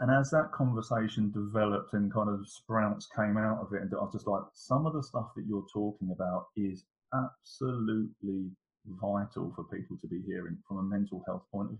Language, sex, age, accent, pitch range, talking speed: English, male, 30-49, British, 100-115 Hz, 205 wpm